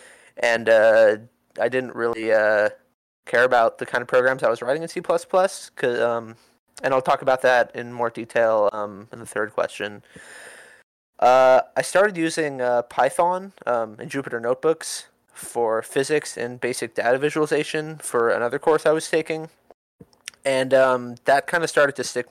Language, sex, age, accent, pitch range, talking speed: English, male, 20-39, American, 115-150 Hz, 165 wpm